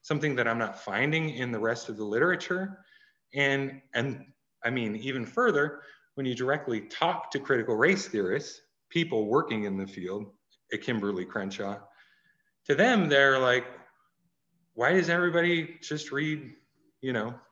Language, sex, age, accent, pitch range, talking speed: English, male, 30-49, American, 115-160 Hz, 150 wpm